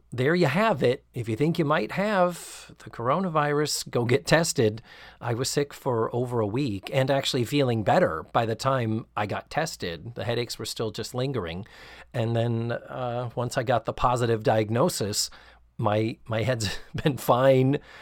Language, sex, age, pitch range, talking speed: English, male, 40-59, 105-130 Hz, 175 wpm